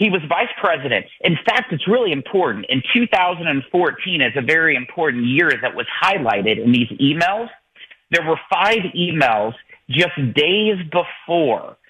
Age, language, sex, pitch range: 40-59, English, male, 135-175 Hz